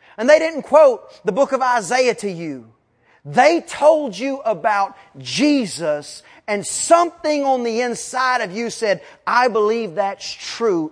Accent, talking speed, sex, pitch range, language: American, 150 wpm, male, 160-255 Hz, English